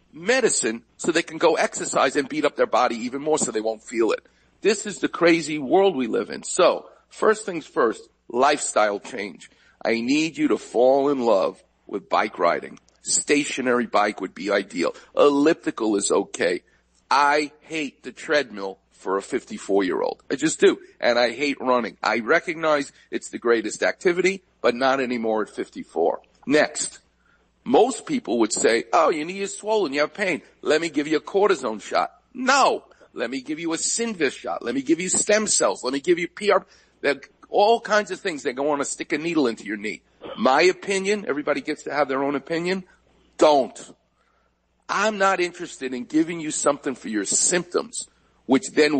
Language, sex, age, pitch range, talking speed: English, male, 50-69, 140-230 Hz, 185 wpm